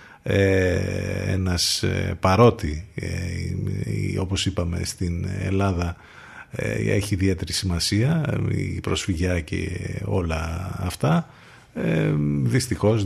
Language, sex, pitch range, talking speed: Greek, male, 90-115 Hz, 70 wpm